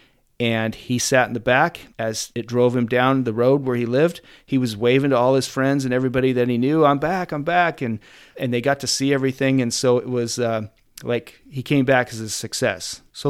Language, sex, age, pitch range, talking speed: English, male, 40-59, 110-140 Hz, 235 wpm